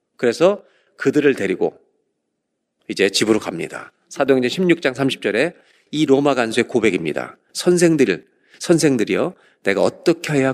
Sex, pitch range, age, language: male, 120-160 Hz, 40-59, Korean